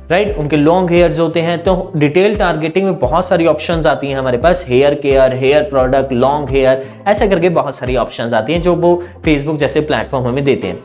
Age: 20-39